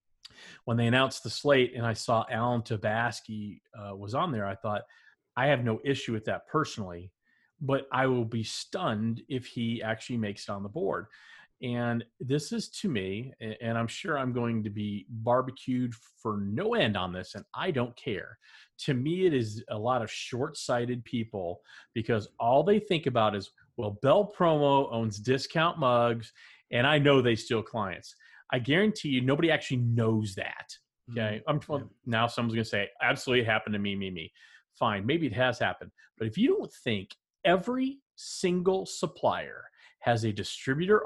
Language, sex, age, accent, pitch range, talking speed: English, male, 40-59, American, 110-145 Hz, 180 wpm